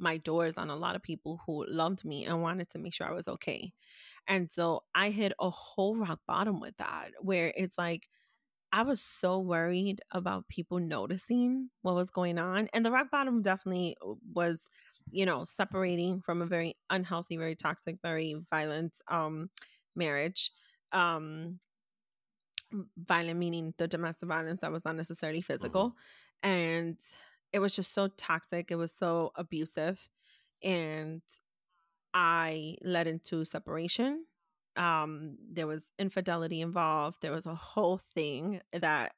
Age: 30-49